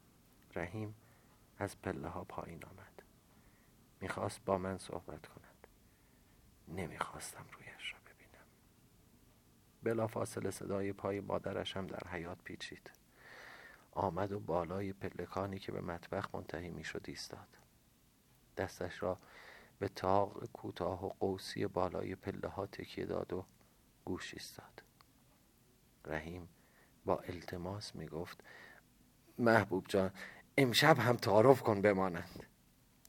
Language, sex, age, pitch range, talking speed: Persian, male, 50-69, 95-125 Hz, 100 wpm